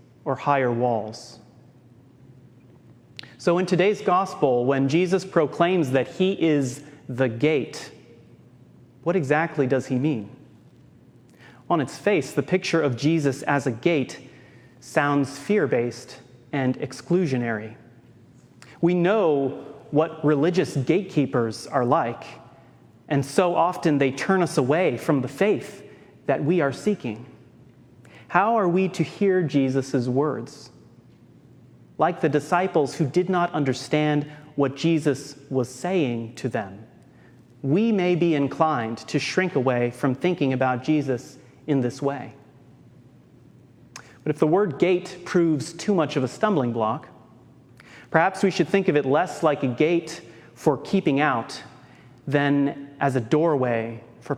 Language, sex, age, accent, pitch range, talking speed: English, male, 30-49, American, 130-170 Hz, 130 wpm